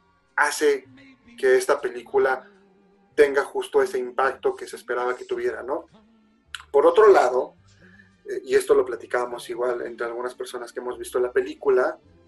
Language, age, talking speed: Spanish, 30-49, 145 wpm